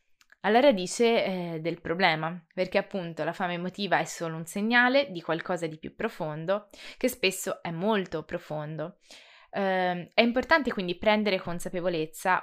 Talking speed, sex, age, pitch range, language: 145 wpm, female, 20-39, 165-215 Hz, Italian